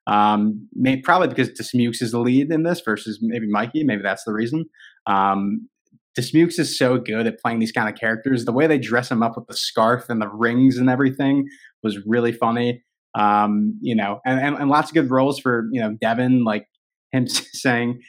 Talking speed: 205 wpm